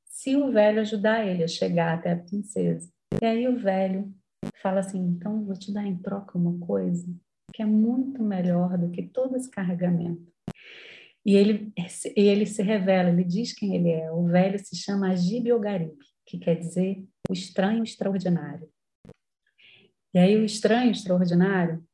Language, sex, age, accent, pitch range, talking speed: Portuguese, female, 30-49, Brazilian, 180-225 Hz, 170 wpm